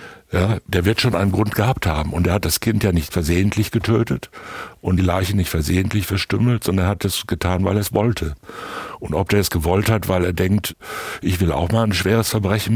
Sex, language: male, German